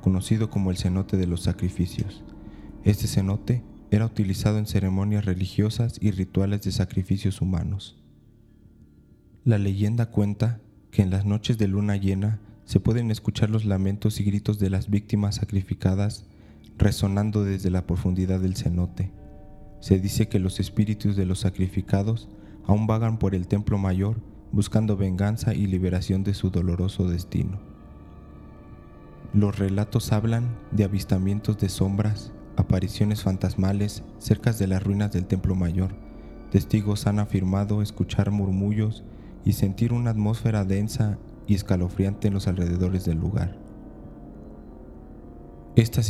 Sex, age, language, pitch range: male, 20-39, Spanish, 95-105 Hz